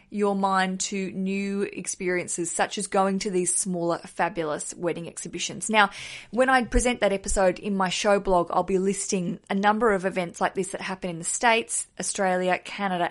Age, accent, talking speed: 20-39, Australian, 185 wpm